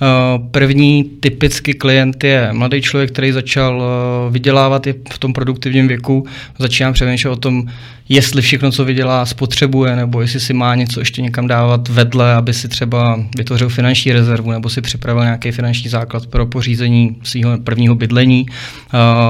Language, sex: Czech, male